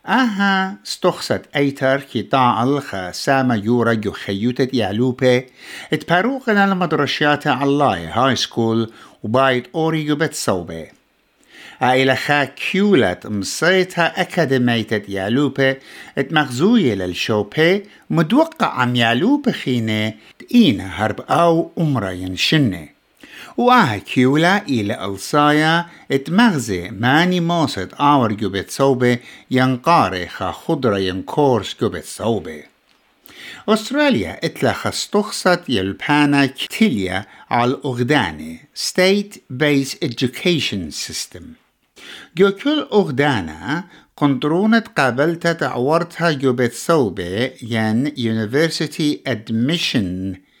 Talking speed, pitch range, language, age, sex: 80 wpm, 115-170 Hz, English, 60-79, male